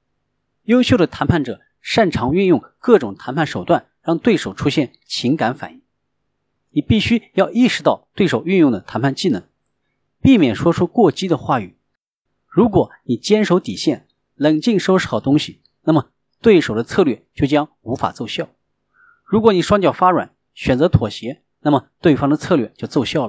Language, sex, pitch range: Chinese, male, 150-210 Hz